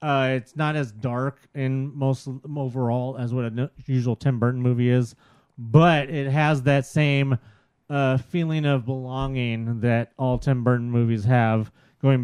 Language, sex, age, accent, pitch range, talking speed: English, male, 30-49, American, 115-135 Hz, 165 wpm